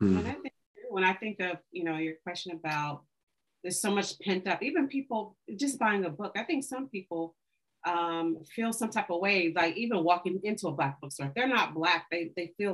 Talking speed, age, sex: 220 wpm, 40-59, female